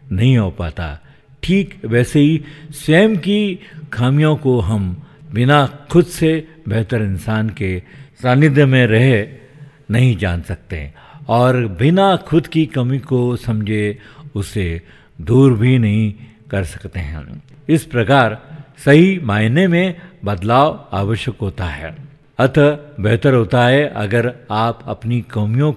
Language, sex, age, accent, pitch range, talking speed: Hindi, male, 50-69, native, 105-145 Hz, 125 wpm